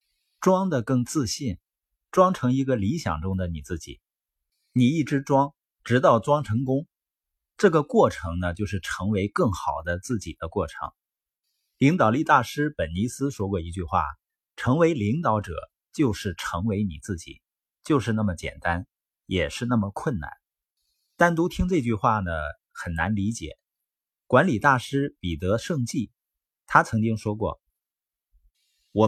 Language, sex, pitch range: Chinese, male, 85-135 Hz